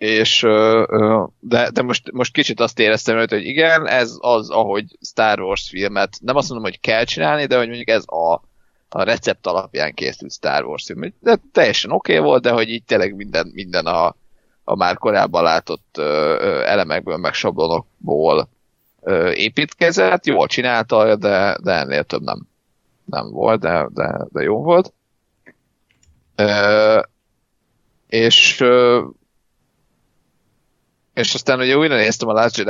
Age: 30-49